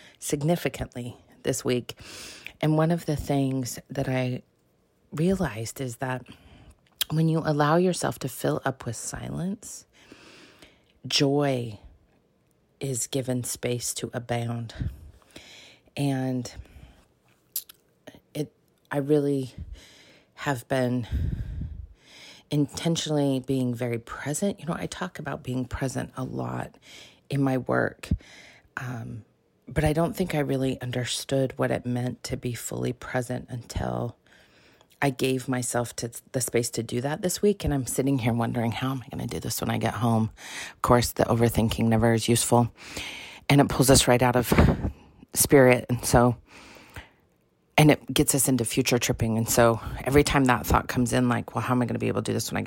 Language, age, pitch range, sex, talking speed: English, 30-49, 115-140 Hz, female, 160 wpm